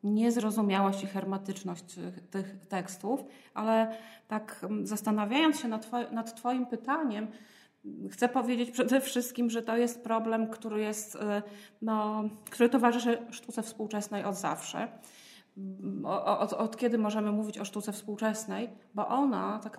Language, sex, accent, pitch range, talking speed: Polish, female, native, 190-235 Hz, 120 wpm